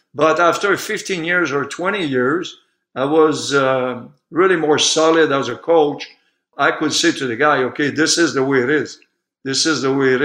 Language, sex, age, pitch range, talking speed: English, male, 50-69, 130-150 Hz, 200 wpm